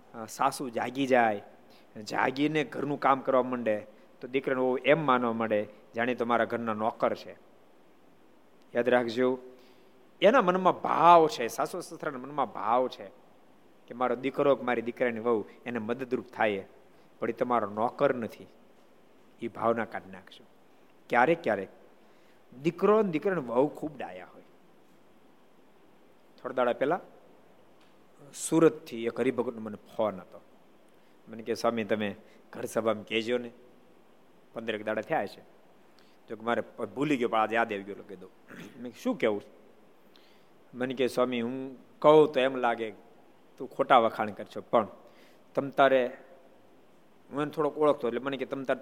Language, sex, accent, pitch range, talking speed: Gujarati, male, native, 115-135 Hz, 130 wpm